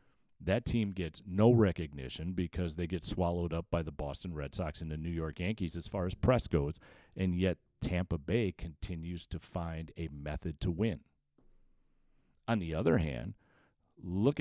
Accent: American